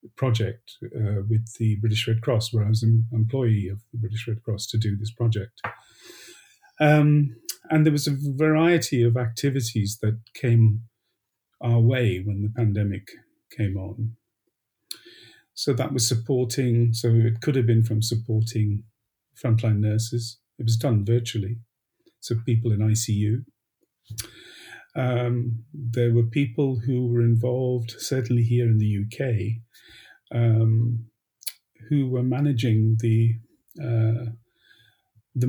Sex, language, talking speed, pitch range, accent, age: male, English, 130 wpm, 110-125 Hz, British, 50-69